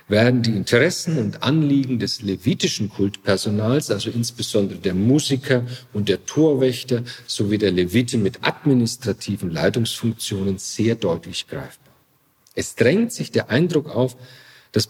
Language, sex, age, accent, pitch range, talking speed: German, male, 50-69, German, 105-140 Hz, 125 wpm